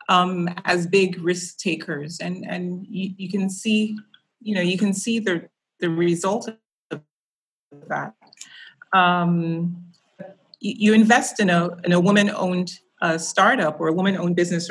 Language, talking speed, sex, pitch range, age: English, 135 wpm, female, 160-190 Hz, 30-49